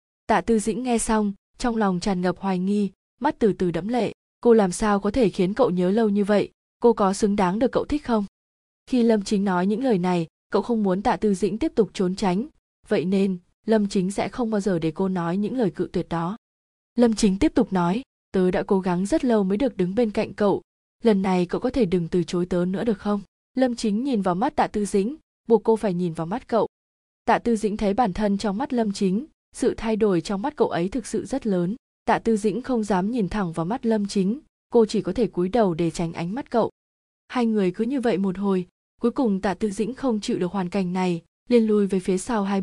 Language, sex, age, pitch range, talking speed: Vietnamese, female, 20-39, 190-230 Hz, 250 wpm